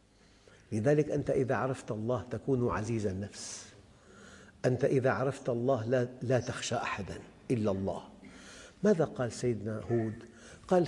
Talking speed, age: 125 wpm, 50-69